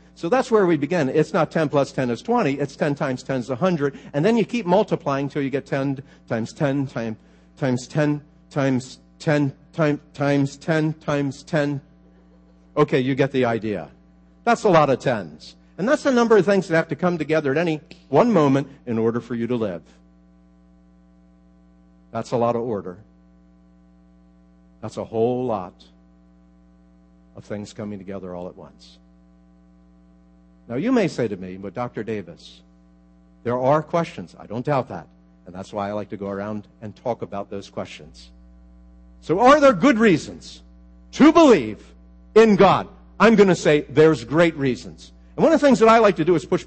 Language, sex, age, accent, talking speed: English, male, 60-79, American, 180 wpm